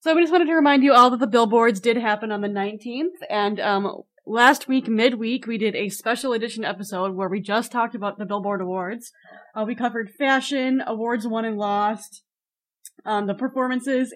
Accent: American